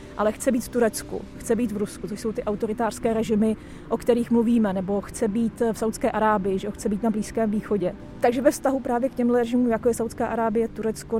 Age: 30-49